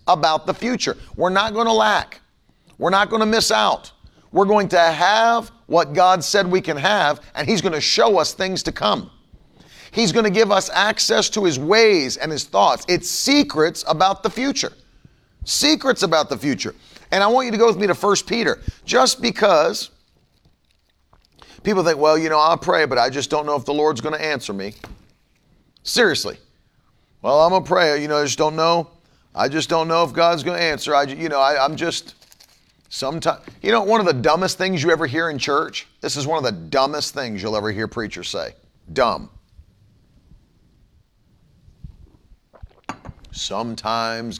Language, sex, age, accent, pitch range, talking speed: English, male, 40-59, American, 115-190 Hz, 190 wpm